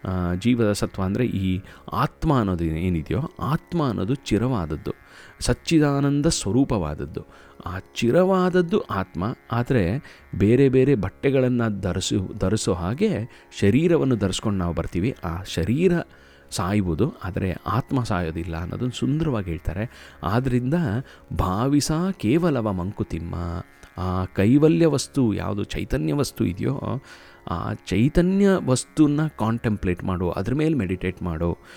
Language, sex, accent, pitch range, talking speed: Kannada, male, native, 90-130 Hz, 105 wpm